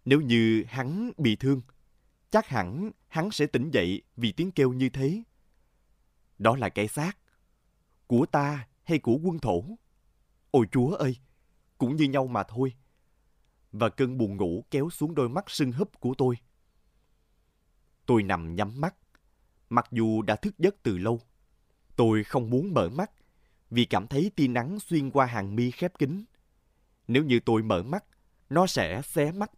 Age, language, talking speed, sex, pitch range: 20-39, Vietnamese, 165 wpm, male, 110-140 Hz